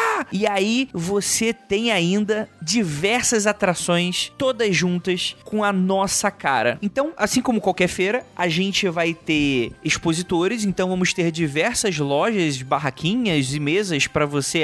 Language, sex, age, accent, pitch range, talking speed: Portuguese, male, 20-39, Brazilian, 170-225 Hz, 135 wpm